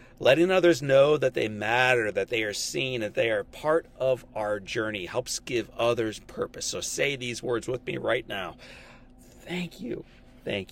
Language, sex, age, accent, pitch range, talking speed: English, male, 40-59, American, 120-160 Hz, 180 wpm